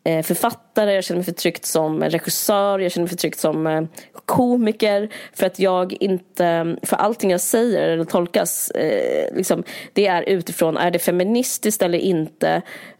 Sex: female